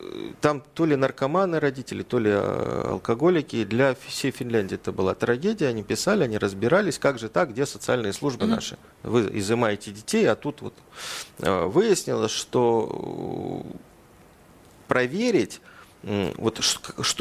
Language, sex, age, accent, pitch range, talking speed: Russian, male, 40-59, native, 110-155 Hz, 115 wpm